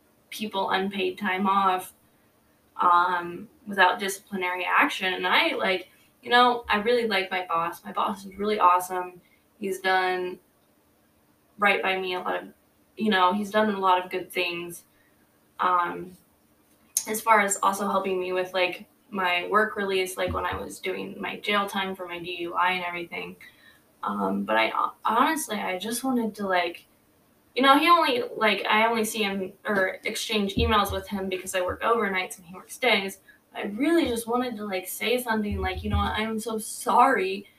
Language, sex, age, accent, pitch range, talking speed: English, female, 20-39, American, 180-215 Hz, 175 wpm